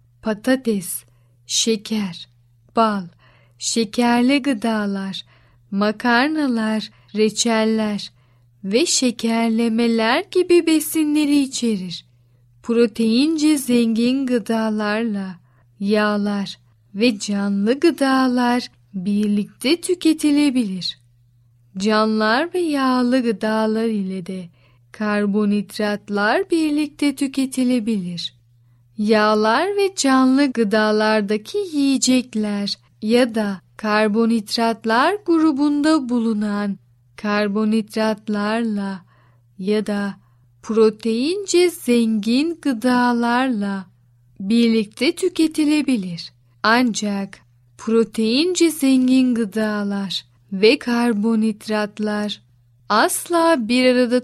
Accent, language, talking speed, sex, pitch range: native, Turkish, 65 wpm, female, 195-250 Hz